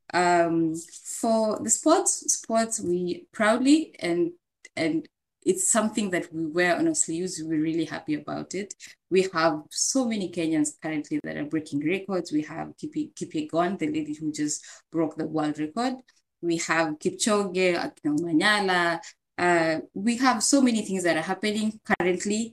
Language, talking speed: English, 150 wpm